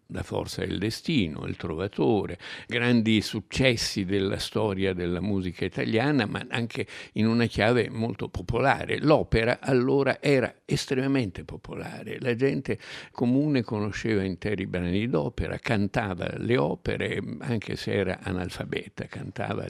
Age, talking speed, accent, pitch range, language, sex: 60-79, 120 wpm, native, 95-120 Hz, Italian, male